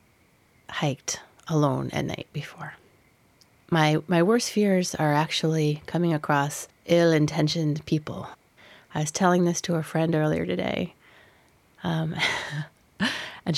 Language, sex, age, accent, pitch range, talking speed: English, female, 30-49, American, 150-170 Hz, 115 wpm